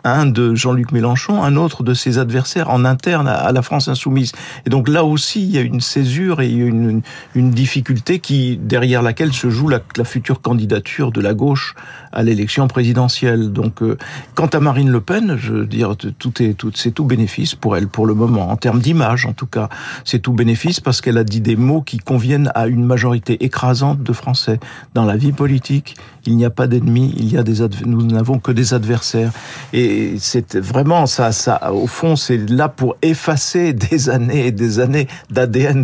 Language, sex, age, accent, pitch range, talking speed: French, male, 50-69, French, 115-140 Hz, 210 wpm